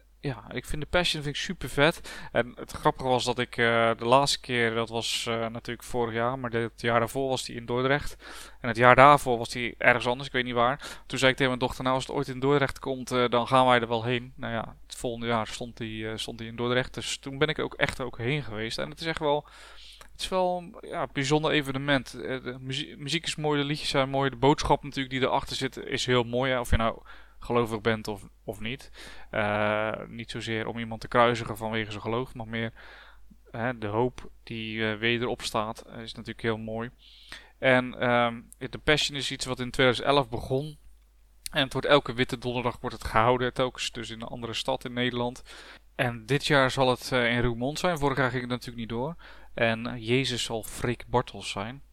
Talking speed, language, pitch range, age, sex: 230 wpm, Dutch, 115-135 Hz, 20-39, male